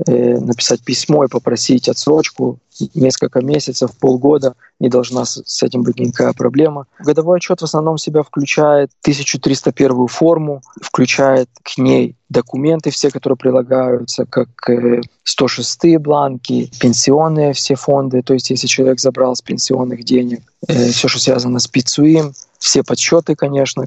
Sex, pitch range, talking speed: male, 125-145 Hz, 130 wpm